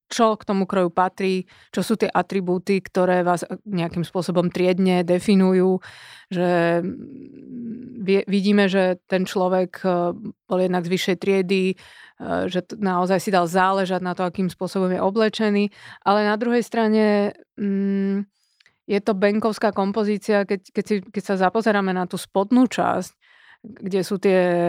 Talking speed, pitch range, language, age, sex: 135 wpm, 185-215 Hz, Slovak, 30-49, female